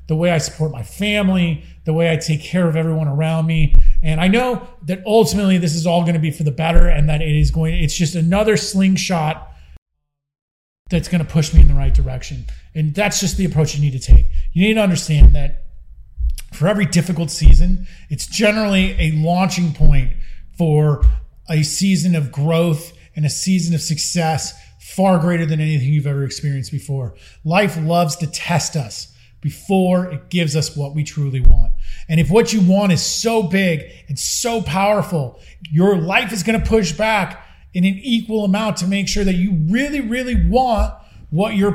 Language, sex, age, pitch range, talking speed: English, male, 30-49, 150-195 Hz, 190 wpm